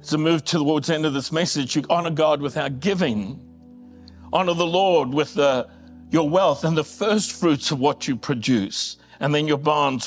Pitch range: 145-190 Hz